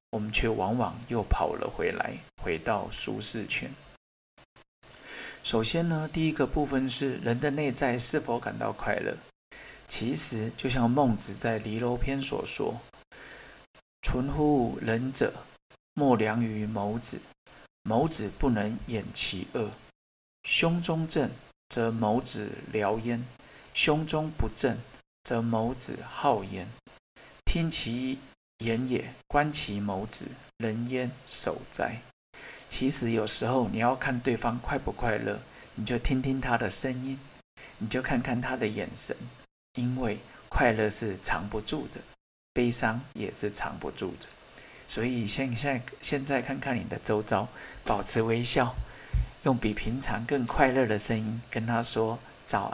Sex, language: male, Chinese